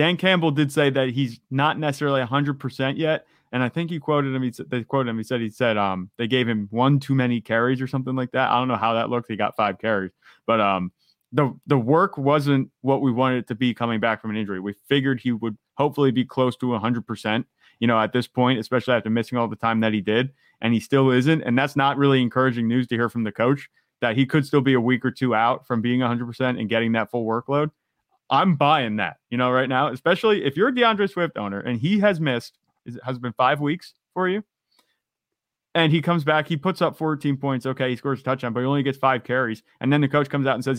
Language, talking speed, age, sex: English, 255 wpm, 20-39, male